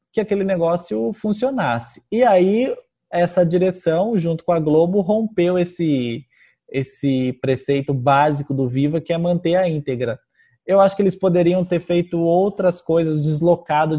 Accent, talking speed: Brazilian, 145 wpm